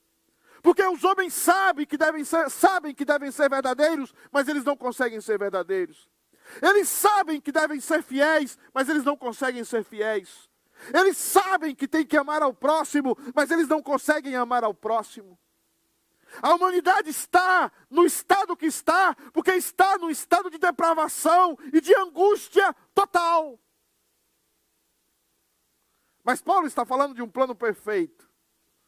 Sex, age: male, 50-69